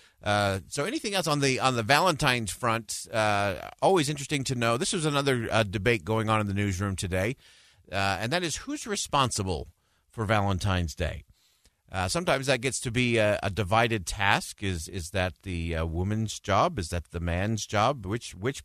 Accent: American